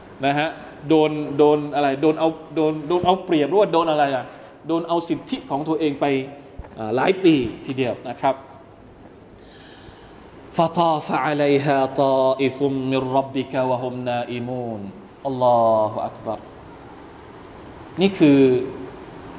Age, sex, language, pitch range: 20-39, male, Thai, 130-195 Hz